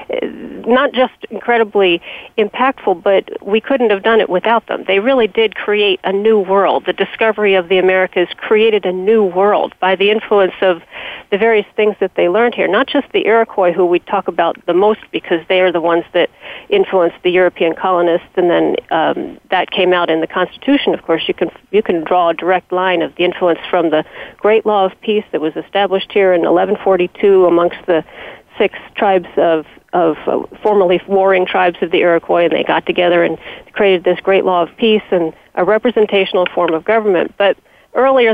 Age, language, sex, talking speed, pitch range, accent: 40-59, English, female, 195 wpm, 180-215 Hz, American